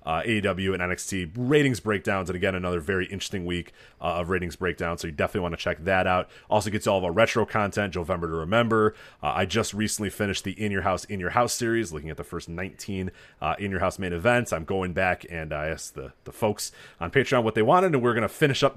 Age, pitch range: 30-49, 85-105 Hz